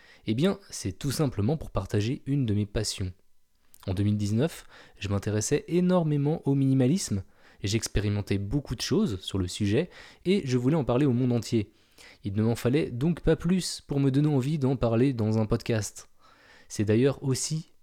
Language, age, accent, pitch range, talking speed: French, 20-39, French, 105-150 Hz, 175 wpm